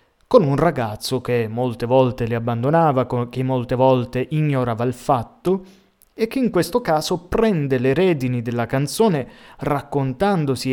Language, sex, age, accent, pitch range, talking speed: Italian, male, 30-49, native, 120-155 Hz, 140 wpm